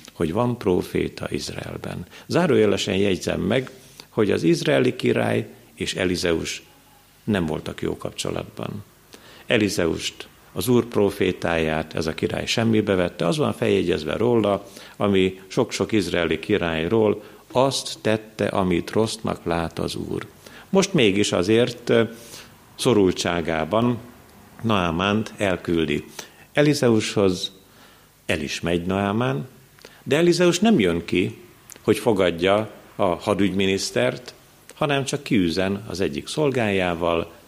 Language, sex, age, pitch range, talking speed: Hungarian, male, 50-69, 85-125 Hz, 105 wpm